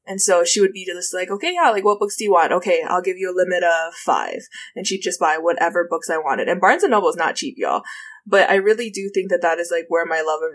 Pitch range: 175-235 Hz